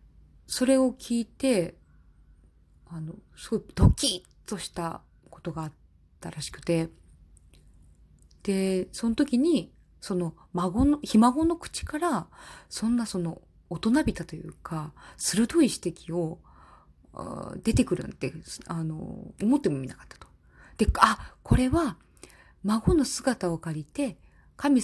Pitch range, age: 165-215 Hz, 20-39